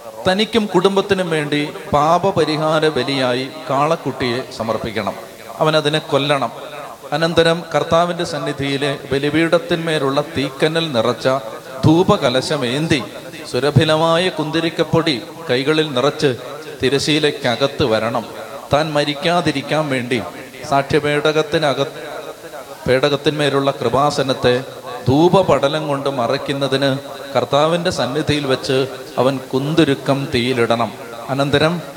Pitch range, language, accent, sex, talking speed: 130-165 Hz, Malayalam, native, male, 75 wpm